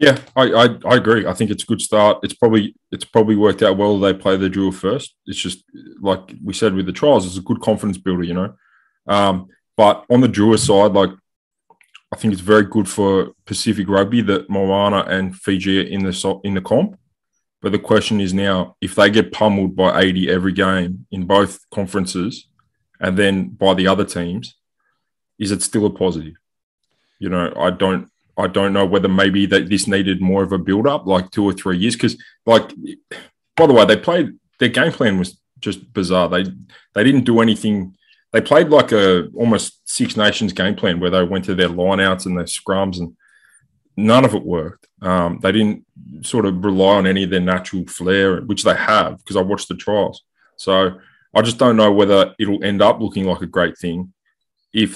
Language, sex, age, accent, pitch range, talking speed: English, male, 20-39, Australian, 95-105 Hz, 205 wpm